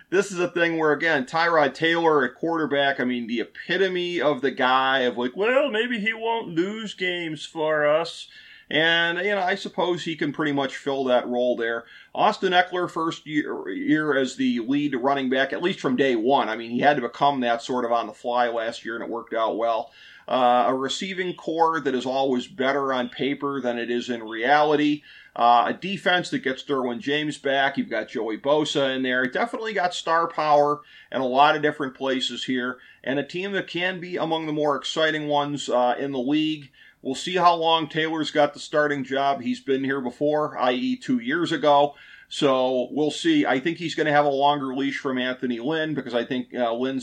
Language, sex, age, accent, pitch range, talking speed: English, male, 40-59, American, 130-165 Hz, 210 wpm